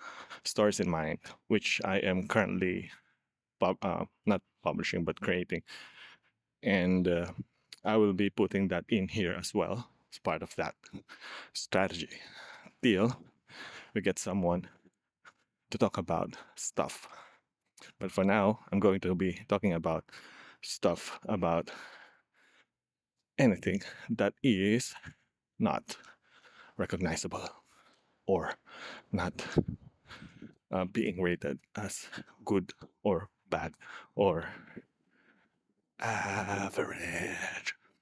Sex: male